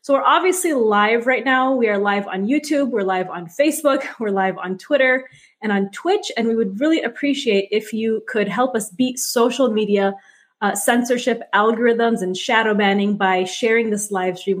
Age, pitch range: 20-39, 205-255 Hz